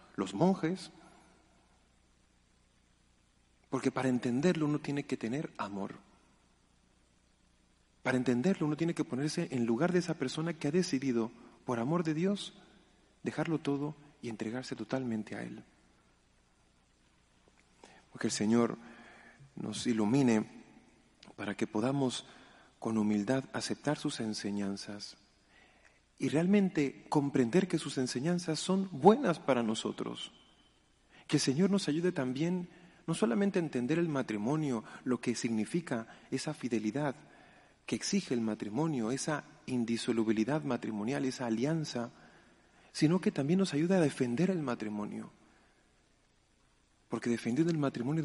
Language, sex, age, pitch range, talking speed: Spanish, male, 40-59, 110-160 Hz, 120 wpm